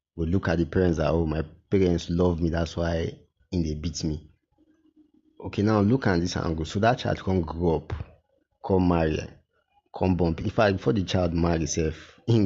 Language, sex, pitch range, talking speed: English, male, 85-100 Hz, 195 wpm